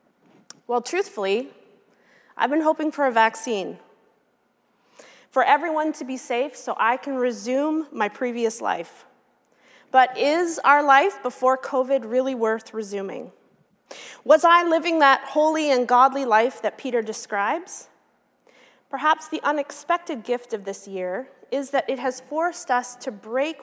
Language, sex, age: English, female, 30-49